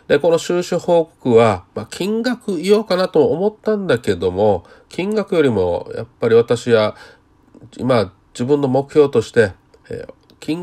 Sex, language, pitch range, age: male, Japanese, 115-170 Hz, 40-59